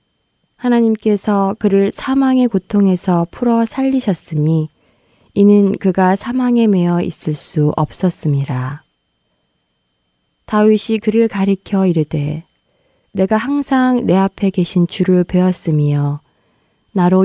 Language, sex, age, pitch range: Korean, female, 20-39, 155-205 Hz